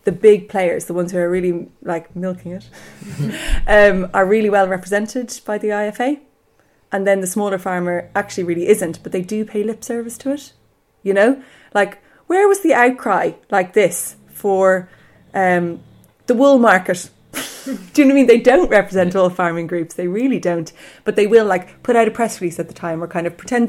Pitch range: 175-210 Hz